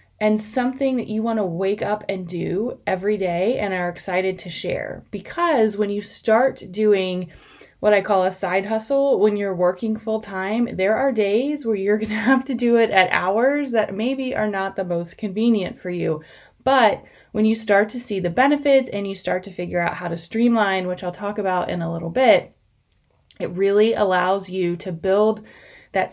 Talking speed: 200 wpm